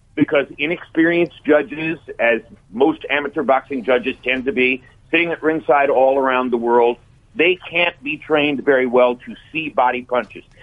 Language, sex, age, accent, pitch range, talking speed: English, male, 50-69, American, 130-165 Hz, 160 wpm